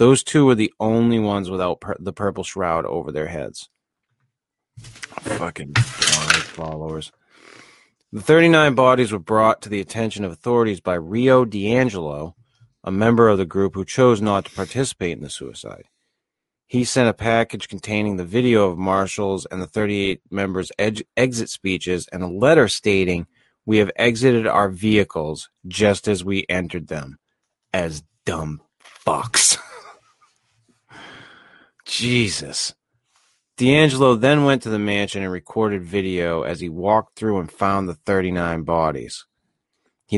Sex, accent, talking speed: male, American, 140 wpm